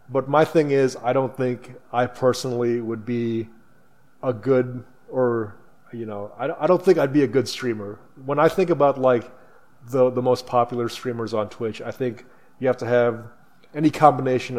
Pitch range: 115-135 Hz